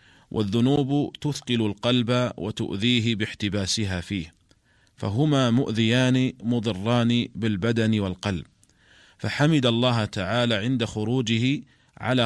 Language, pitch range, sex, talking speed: Arabic, 100-120 Hz, male, 85 wpm